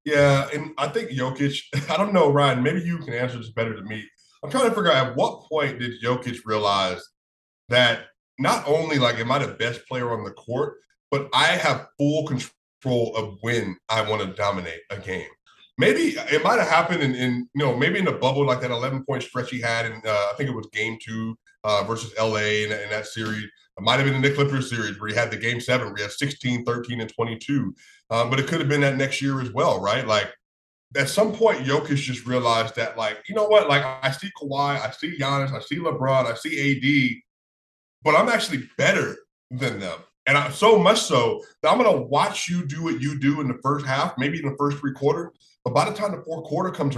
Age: 30-49